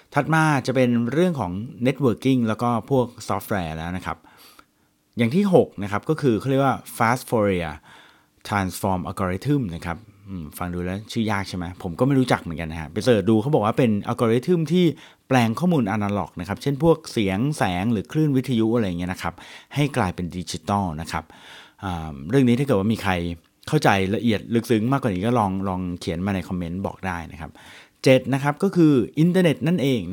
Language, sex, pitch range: Thai, male, 95-125 Hz